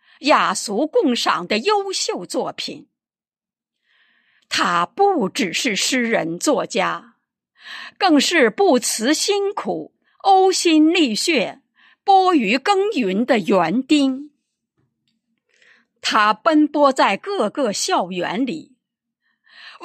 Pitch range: 235-345 Hz